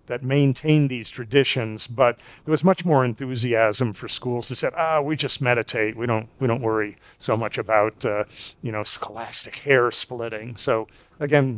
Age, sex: 50-69, male